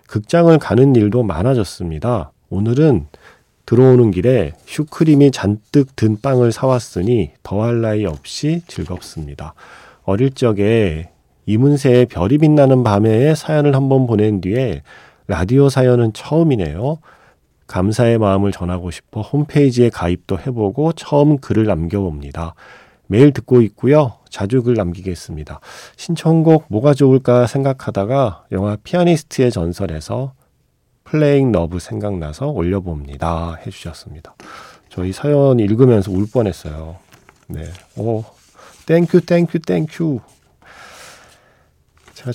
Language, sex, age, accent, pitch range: Korean, male, 40-59, native, 95-135 Hz